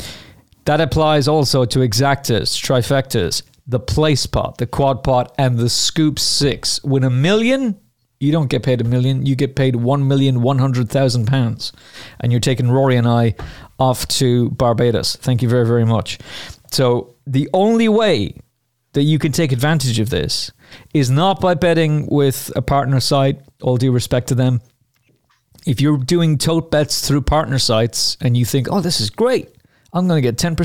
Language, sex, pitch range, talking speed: English, male, 115-140 Hz, 170 wpm